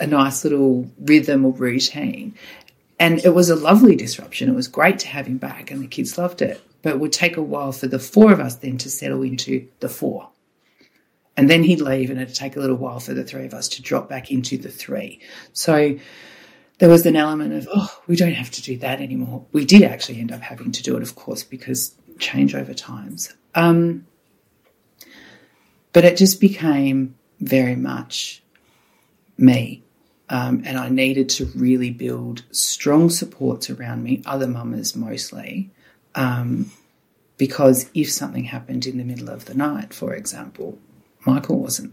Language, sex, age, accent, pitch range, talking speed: English, female, 40-59, Australian, 125-165 Hz, 185 wpm